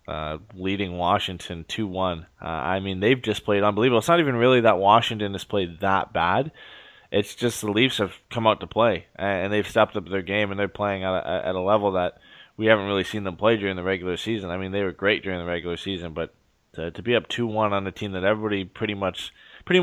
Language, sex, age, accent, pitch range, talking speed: English, male, 20-39, American, 90-105 Hz, 245 wpm